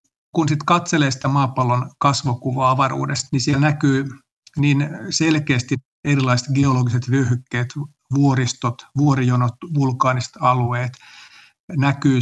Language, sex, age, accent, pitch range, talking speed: Finnish, male, 50-69, native, 125-145 Hz, 95 wpm